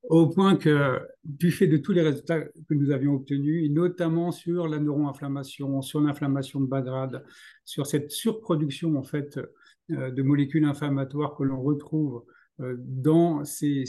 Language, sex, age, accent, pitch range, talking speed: French, male, 50-69, French, 130-155 Hz, 165 wpm